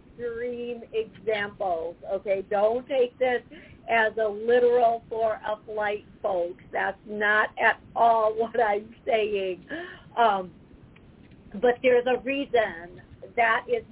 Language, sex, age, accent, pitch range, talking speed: English, female, 50-69, American, 195-230 Hz, 115 wpm